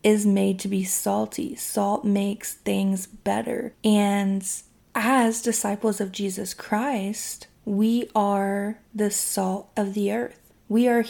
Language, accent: English, American